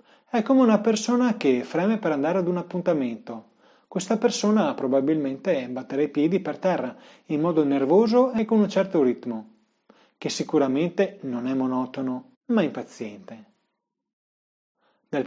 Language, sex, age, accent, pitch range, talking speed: Italian, male, 30-49, native, 135-200 Hz, 140 wpm